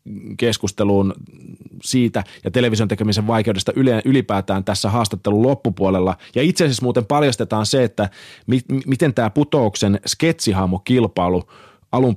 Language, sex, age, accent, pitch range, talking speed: Finnish, male, 30-49, native, 100-130 Hz, 115 wpm